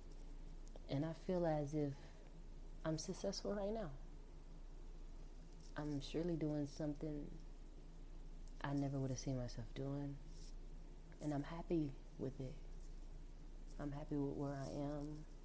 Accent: American